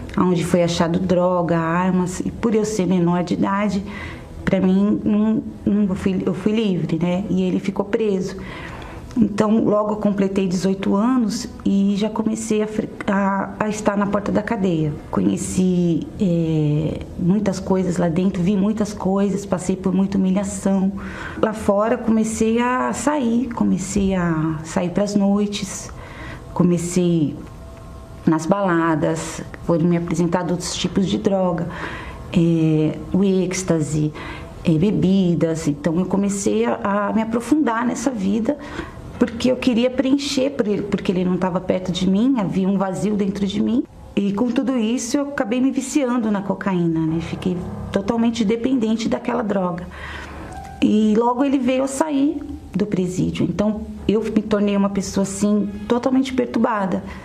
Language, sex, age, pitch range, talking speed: Portuguese, female, 30-49, 180-225 Hz, 150 wpm